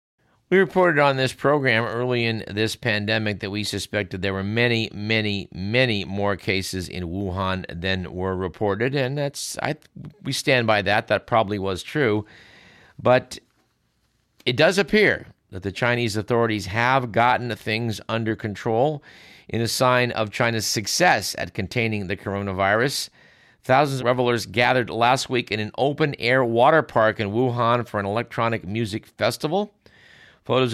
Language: English